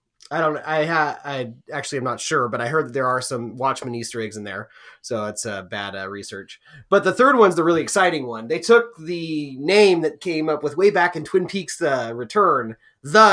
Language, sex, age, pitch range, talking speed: English, male, 30-49, 125-170 Hz, 240 wpm